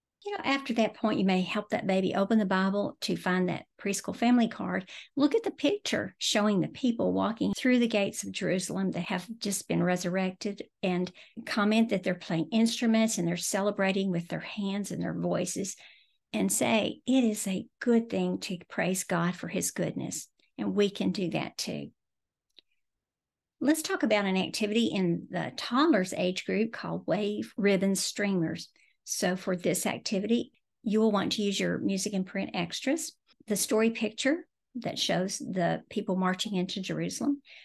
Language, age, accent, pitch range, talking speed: English, 50-69, American, 185-230 Hz, 175 wpm